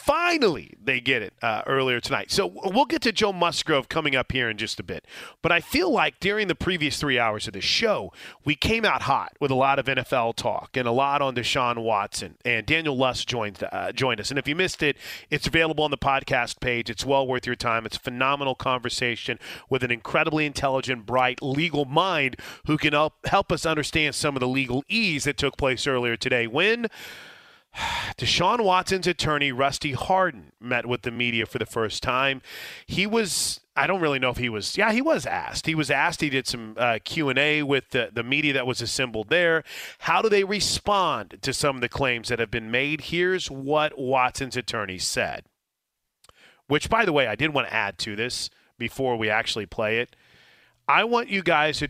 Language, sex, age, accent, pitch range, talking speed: English, male, 30-49, American, 120-155 Hz, 210 wpm